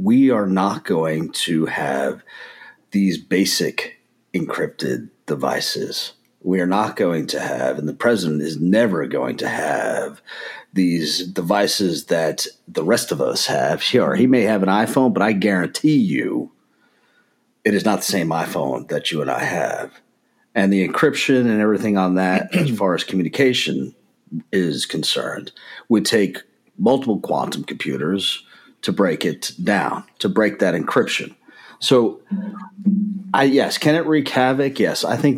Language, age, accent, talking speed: English, 40-59, American, 155 wpm